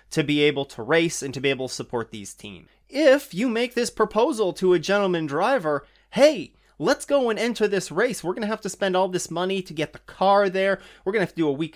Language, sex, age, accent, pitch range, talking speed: English, male, 30-49, American, 140-195 Hz, 260 wpm